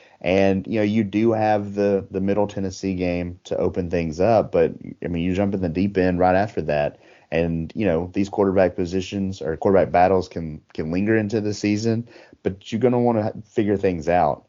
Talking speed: 210 wpm